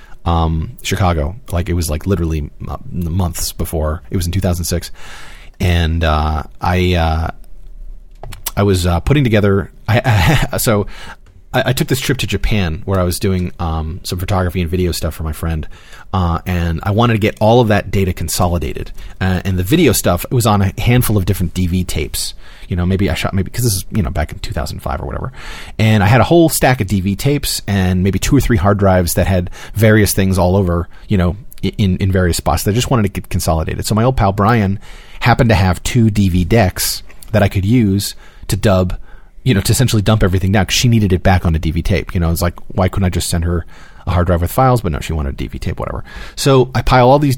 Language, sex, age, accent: English, male, 30-49, American